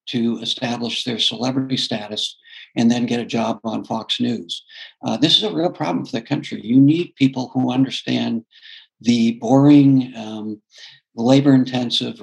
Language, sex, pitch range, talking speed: English, male, 115-140 Hz, 150 wpm